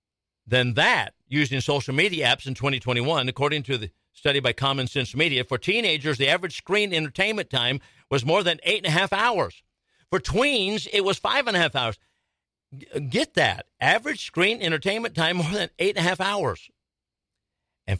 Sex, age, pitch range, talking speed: male, 50-69, 105-150 Hz, 185 wpm